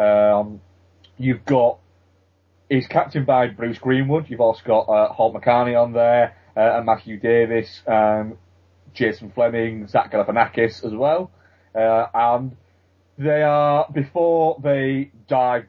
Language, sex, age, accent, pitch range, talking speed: English, male, 30-49, British, 100-120 Hz, 130 wpm